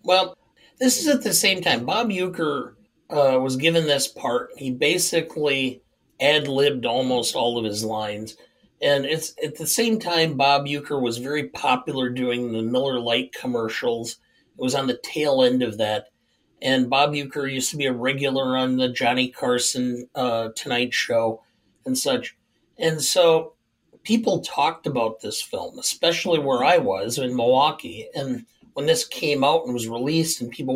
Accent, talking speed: American, 170 wpm